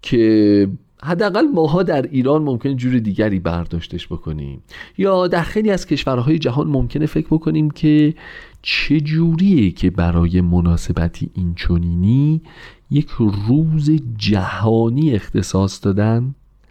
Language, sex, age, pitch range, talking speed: Persian, male, 40-59, 95-145 Hz, 110 wpm